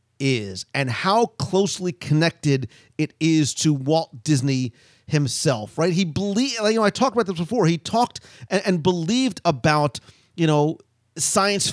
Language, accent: English, American